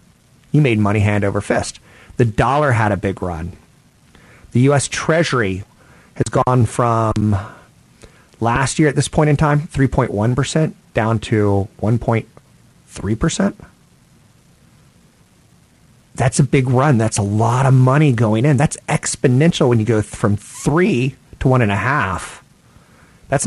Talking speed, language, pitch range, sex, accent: 135 wpm, English, 105-145 Hz, male, American